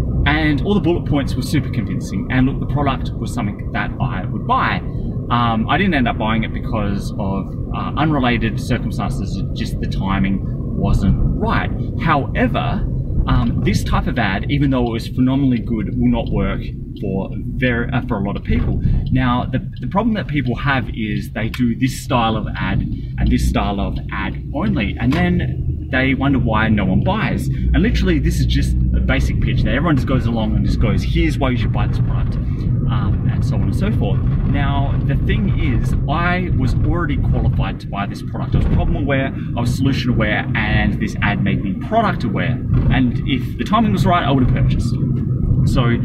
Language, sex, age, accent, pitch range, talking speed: English, male, 20-39, Australian, 115-130 Hz, 200 wpm